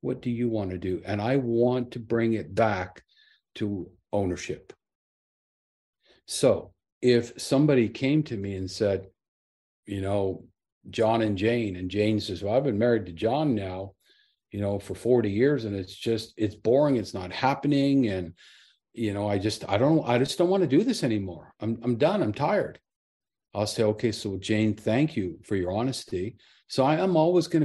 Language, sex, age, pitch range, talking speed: English, male, 50-69, 105-135 Hz, 185 wpm